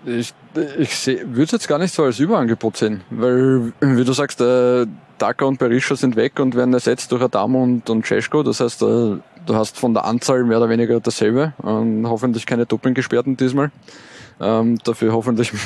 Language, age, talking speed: German, 20-39, 195 wpm